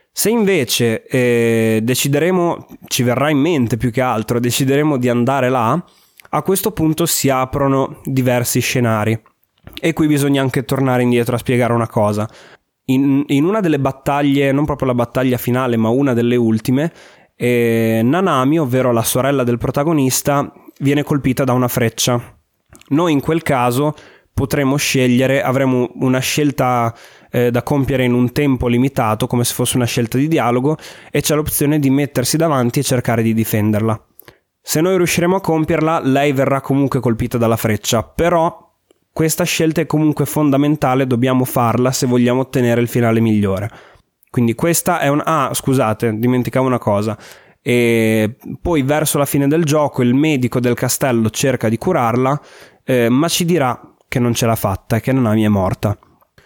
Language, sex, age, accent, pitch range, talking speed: Italian, male, 20-39, native, 120-145 Hz, 160 wpm